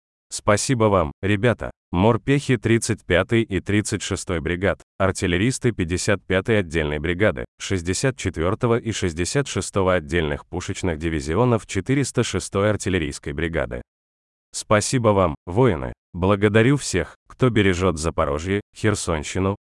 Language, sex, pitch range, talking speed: Russian, male, 85-110 Hz, 90 wpm